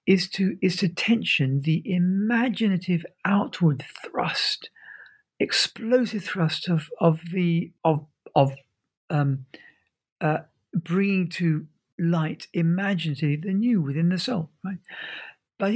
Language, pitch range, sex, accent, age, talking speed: English, 160-215 Hz, male, British, 50-69, 110 wpm